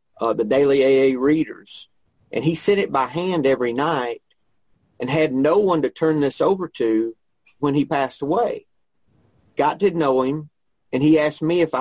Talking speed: 180 wpm